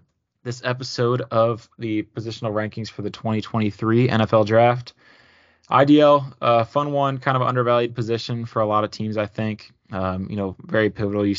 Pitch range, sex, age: 105-120 Hz, male, 20-39